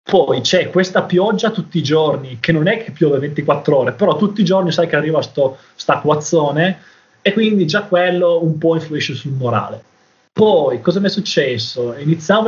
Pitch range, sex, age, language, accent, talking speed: 145-180 Hz, male, 20-39, Italian, native, 190 wpm